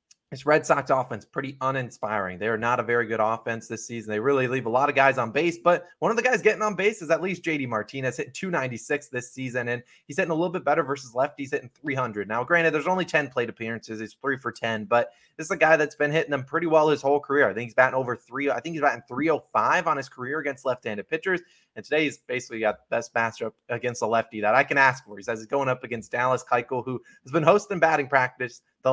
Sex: male